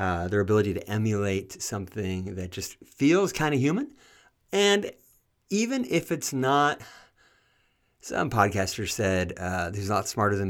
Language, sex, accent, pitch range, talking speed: English, male, American, 100-135 Hz, 150 wpm